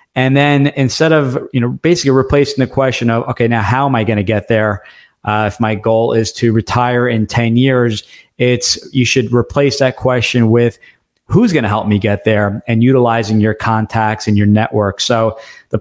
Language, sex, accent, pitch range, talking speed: English, male, American, 110-130 Hz, 200 wpm